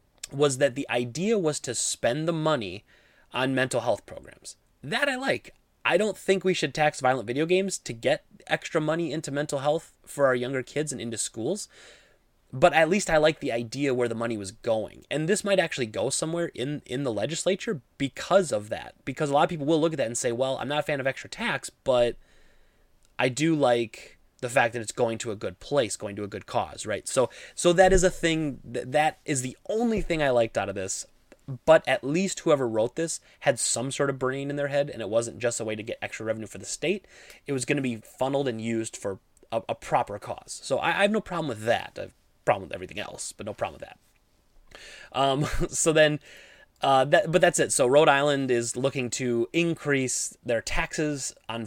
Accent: American